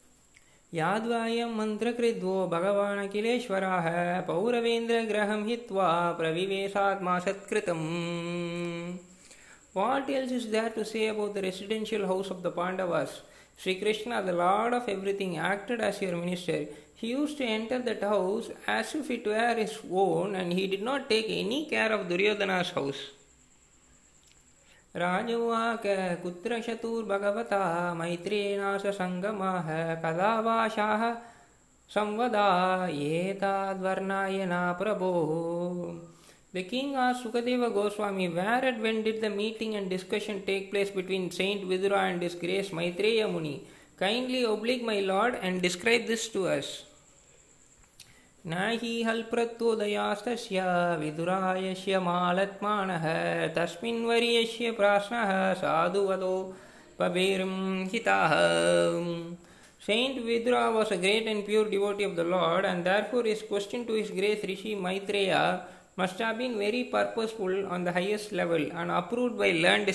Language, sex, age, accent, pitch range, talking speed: Tamil, male, 20-39, native, 180-220 Hz, 100 wpm